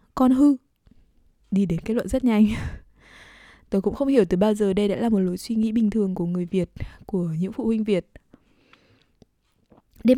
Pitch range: 200-255 Hz